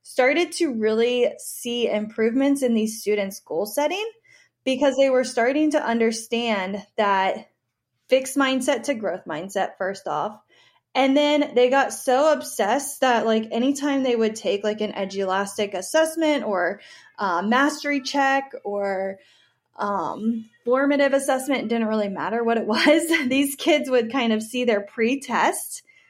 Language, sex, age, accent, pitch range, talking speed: English, female, 20-39, American, 220-275 Hz, 145 wpm